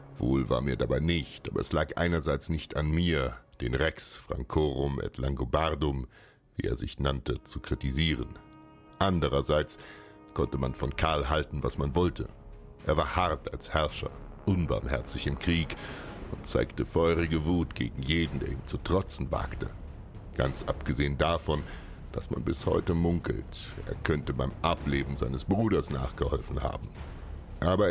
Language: German